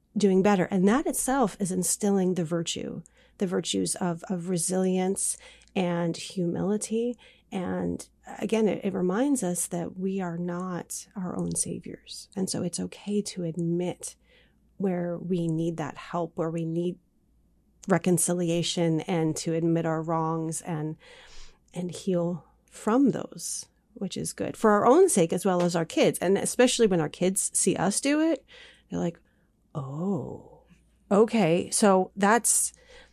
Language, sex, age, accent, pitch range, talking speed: English, female, 30-49, American, 170-205 Hz, 145 wpm